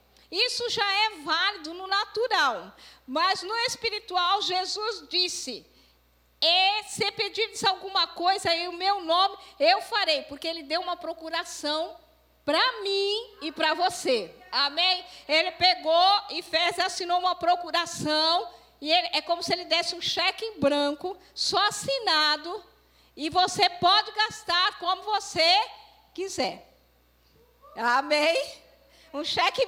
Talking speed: 125 wpm